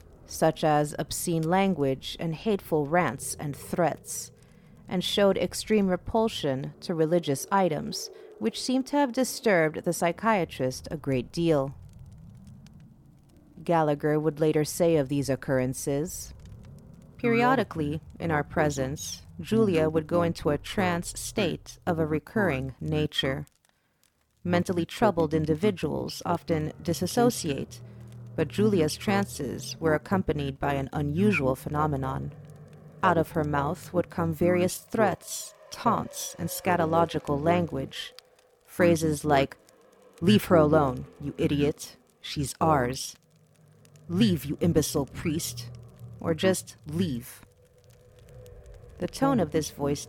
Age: 40-59